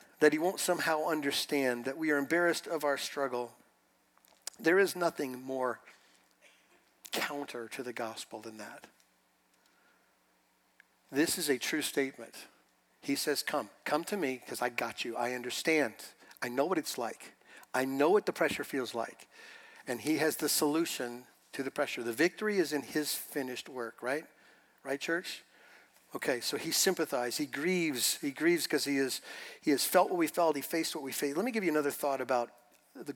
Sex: male